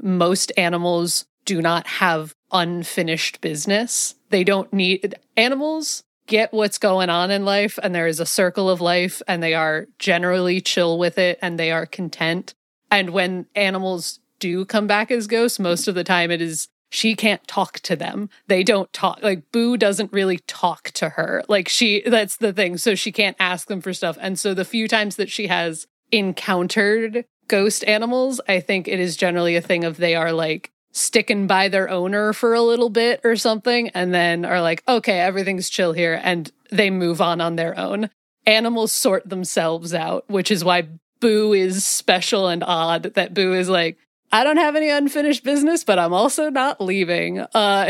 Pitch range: 175-220 Hz